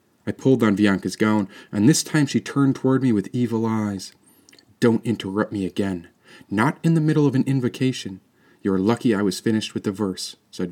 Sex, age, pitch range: male, 40-59, 105-135 Hz